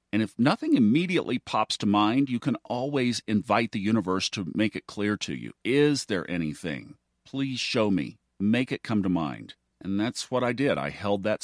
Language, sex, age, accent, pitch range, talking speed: English, male, 50-69, American, 95-120 Hz, 200 wpm